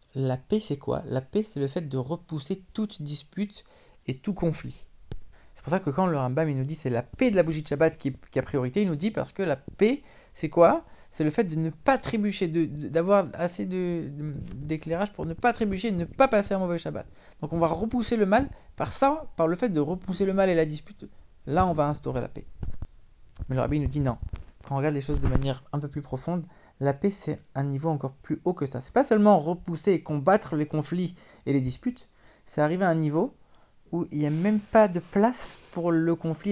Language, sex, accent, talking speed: English, male, French, 250 wpm